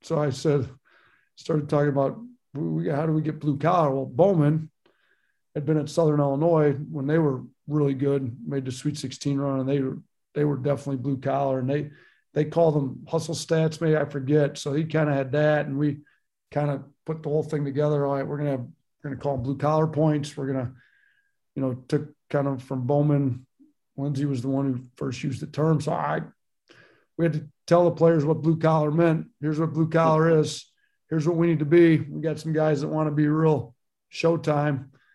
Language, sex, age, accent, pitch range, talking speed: English, male, 50-69, American, 140-155 Hz, 220 wpm